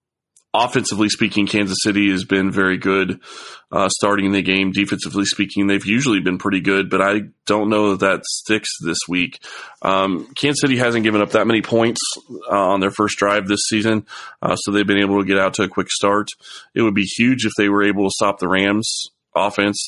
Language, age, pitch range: English, 20-39, 90-100 Hz